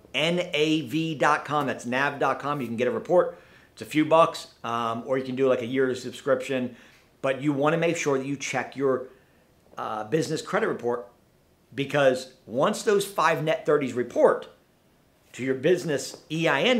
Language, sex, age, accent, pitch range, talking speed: English, male, 50-69, American, 125-160 Hz, 165 wpm